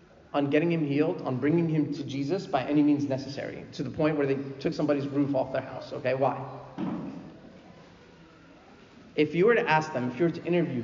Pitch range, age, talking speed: 135-175 Hz, 30-49, 205 wpm